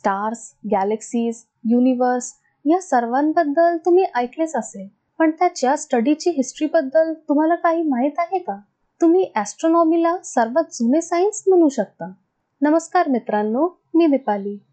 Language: Marathi